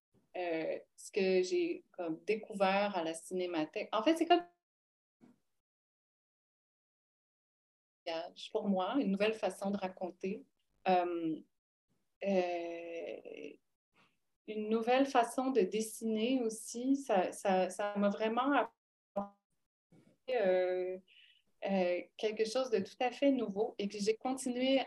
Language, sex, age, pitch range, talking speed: French, female, 30-49, 180-220 Hz, 115 wpm